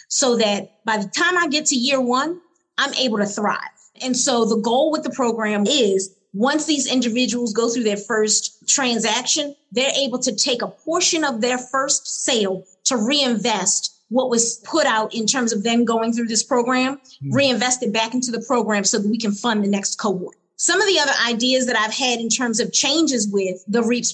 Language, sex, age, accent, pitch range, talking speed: English, female, 30-49, American, 215-260 Hz, 205 wpm